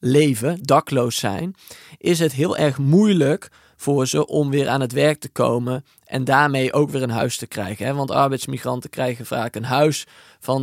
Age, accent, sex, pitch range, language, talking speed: 20-39, Dutch, male, 130-160 Hz, Dutch, 180 wpm